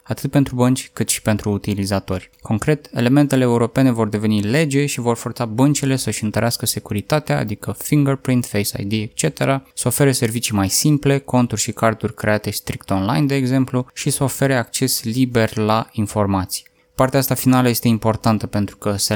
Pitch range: 110-135 Hz